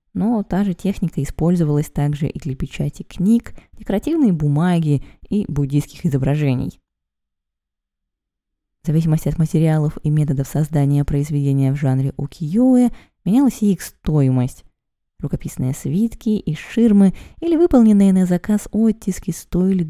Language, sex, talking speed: Russian, female, 120 wpm